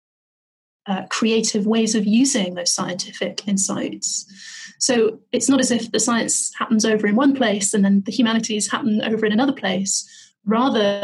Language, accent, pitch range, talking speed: English, British, 200-255 Hz, 165 wpm